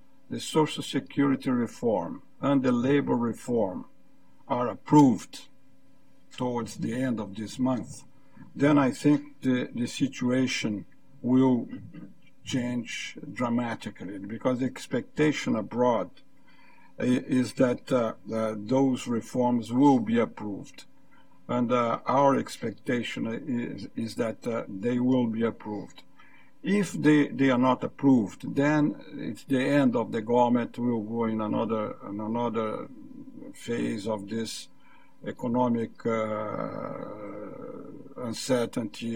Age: 60-79